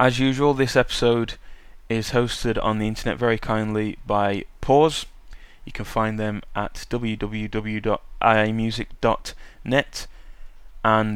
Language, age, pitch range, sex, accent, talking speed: English, 20-39, 105-120 Hz, male, British, 110 wpm